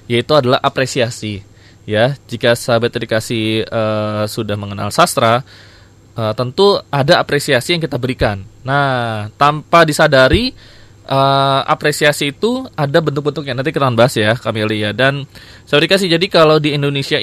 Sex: male